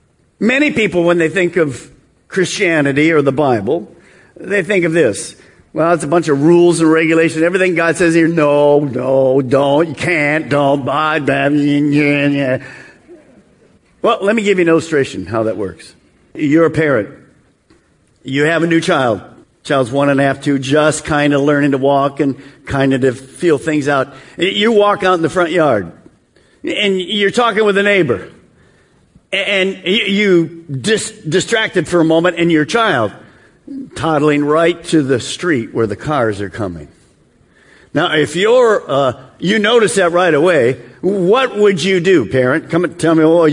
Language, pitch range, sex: English, 145-205 Hz, male